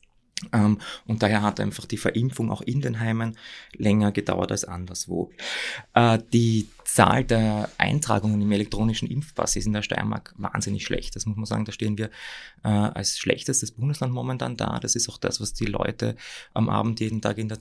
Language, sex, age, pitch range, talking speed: German, male, 20-39, 105-120 Hz, 175 wpm